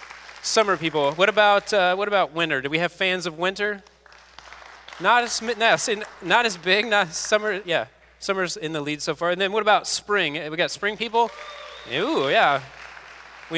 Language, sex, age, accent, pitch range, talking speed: English, male, 20-39, American, 125-180 Hz, 180 wpm